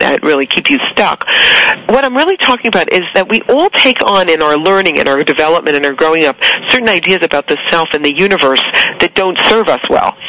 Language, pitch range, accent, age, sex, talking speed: English, 155-225 Hz, American, 40-59, female, 225 wpm